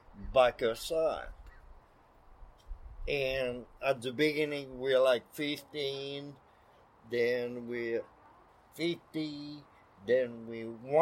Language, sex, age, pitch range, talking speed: English, male, 50-69, 120-165 Hz, 80 wpm